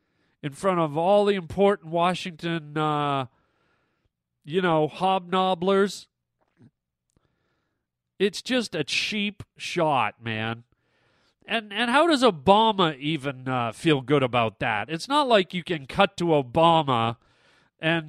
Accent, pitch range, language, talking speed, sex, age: American, 155-245 Hz, English, 125 wpm, male, 40-59